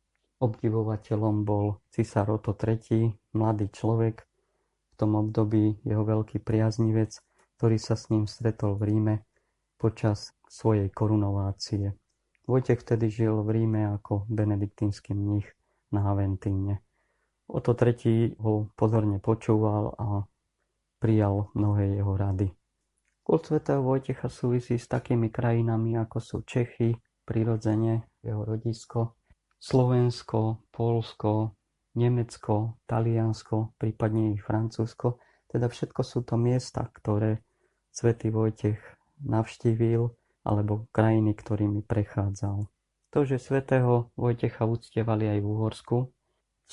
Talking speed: 110 wpm